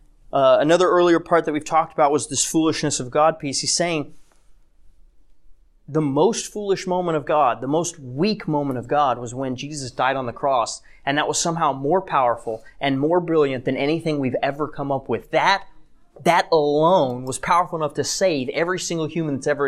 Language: English